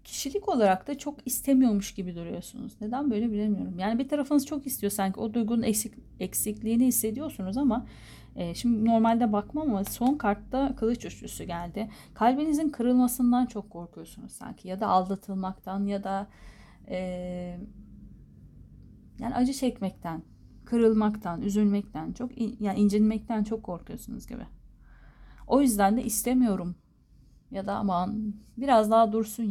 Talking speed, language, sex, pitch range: 135 wpm, Turkish, female, 180-230 Hz